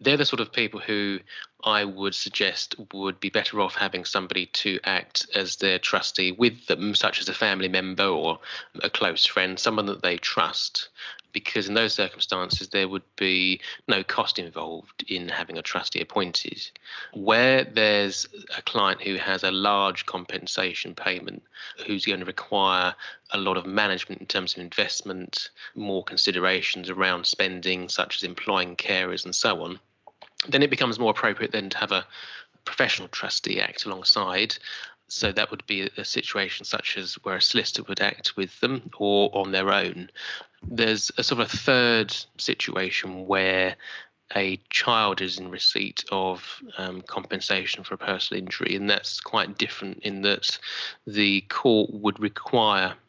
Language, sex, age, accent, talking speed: English, male, 20-39, British, 165 wpm